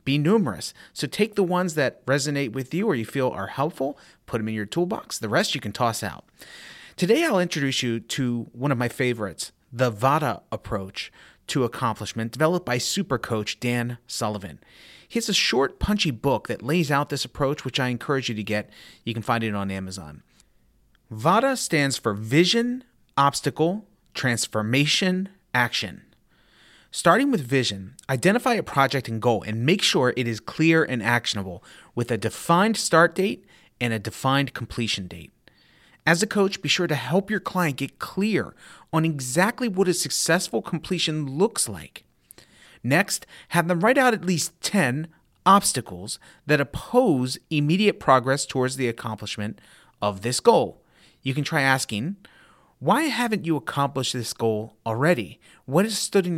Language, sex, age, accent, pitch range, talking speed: English, male, 30-49, American, 115-175 Hz, 165 wpm